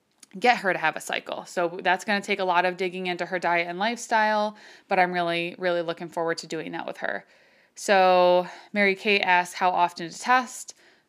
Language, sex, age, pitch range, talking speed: English, female, 20-39, 175-220 Hz, 210 wpm